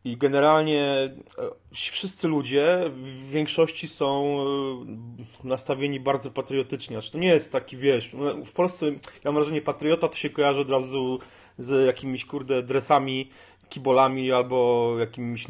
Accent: native